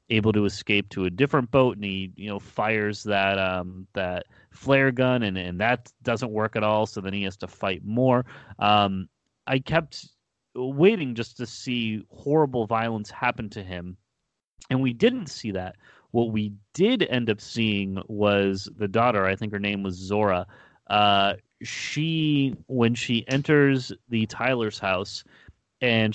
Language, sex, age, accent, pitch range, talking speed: English, male, 30-49, American, 100-125 Hz, 165 wpm